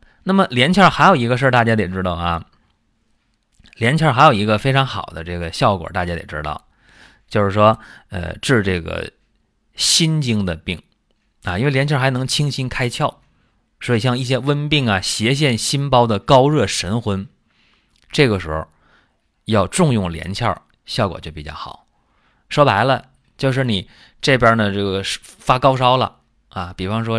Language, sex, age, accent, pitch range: Chinese, male, 20-39, native, 90-125 Hz